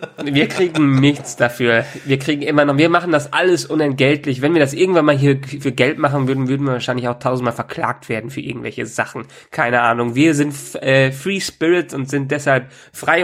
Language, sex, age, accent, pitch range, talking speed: German, male, 20-39, German, 125-150 Hz, 200 wpm